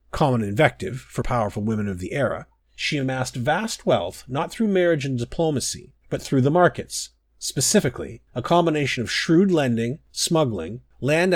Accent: American